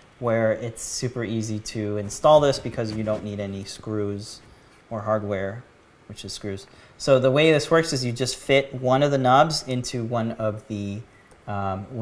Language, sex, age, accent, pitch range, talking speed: English, male, 30-49, American, 105-130 Hz, 180 wpm